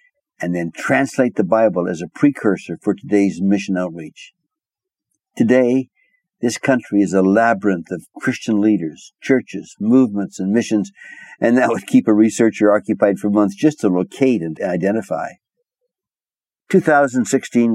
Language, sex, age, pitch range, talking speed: English, male, 60-79, 105-175 Hz, 135 wpm